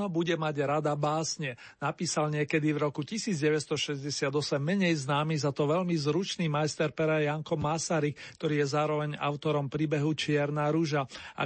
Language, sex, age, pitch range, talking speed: Slovak, male, 40-59, 150-180 Hz, 140 wpm